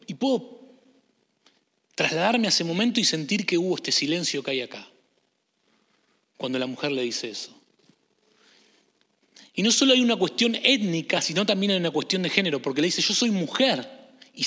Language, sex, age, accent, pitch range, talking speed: English, male, 30-49, Argentinian, 160-240 Hz, 175 wpm